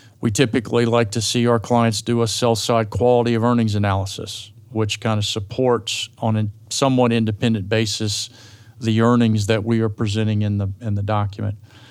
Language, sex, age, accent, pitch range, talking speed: English, male, 40-59, American, 110-120 Hz, 175 wpm